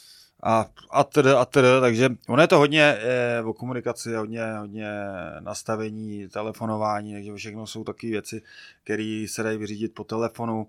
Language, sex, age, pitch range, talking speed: Czech, male, 20-39, 105-125 Hz, 165 wpm